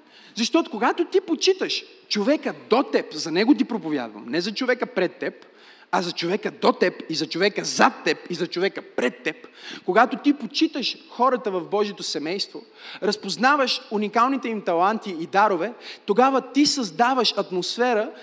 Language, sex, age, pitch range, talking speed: Bulgarian, male, 30-49, 205-290 Hz, 160 wpm